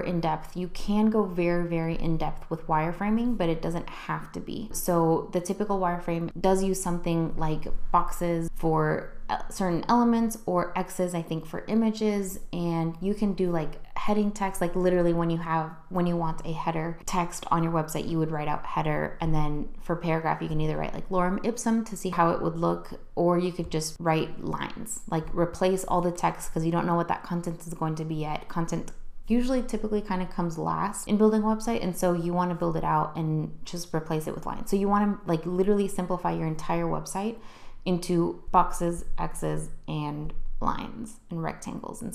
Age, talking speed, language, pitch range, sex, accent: 20-39, 205 wpm, English, 165-190 Hz, female, American